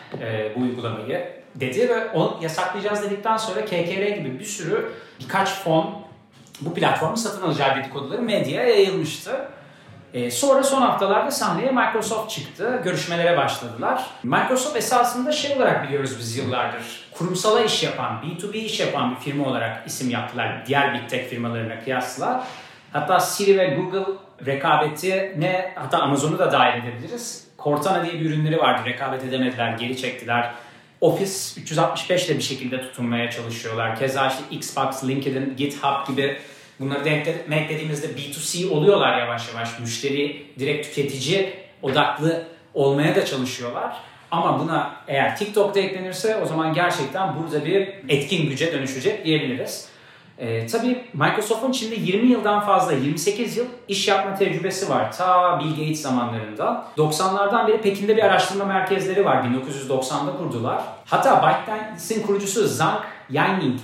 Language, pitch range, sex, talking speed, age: Turkish, 135-195 Hz, male, 135 wpm, 40-59